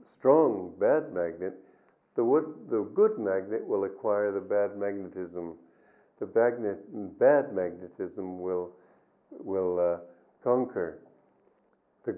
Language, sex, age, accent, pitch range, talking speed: English, male, 50-69, American, 95-130 Hz, 100 wpm